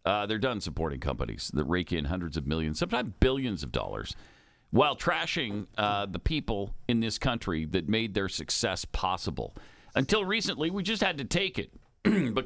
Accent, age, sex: American, 50-69, male